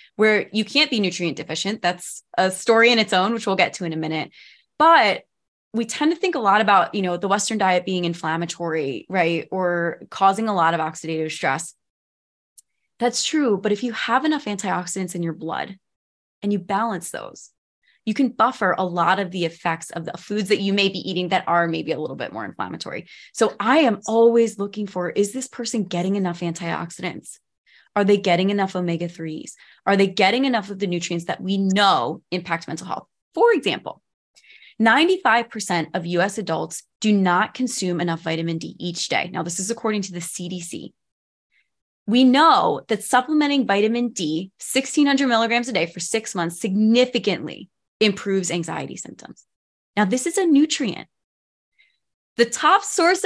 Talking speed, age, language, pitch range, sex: 175 wpm, 20-39, English, 175-235 Hz, female